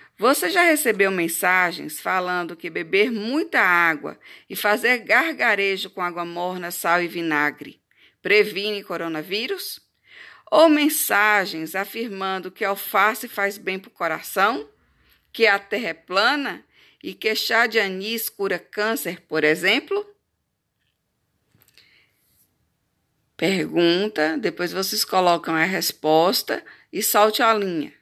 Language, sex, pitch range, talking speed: Portuguese, female, 175-225 Hz, 115 wpm